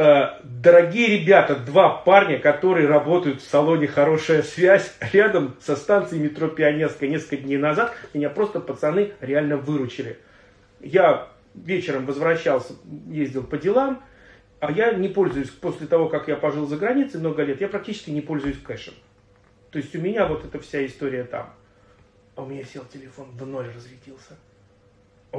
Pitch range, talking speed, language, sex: 130-175 Hz, 155 wpm, Russian, male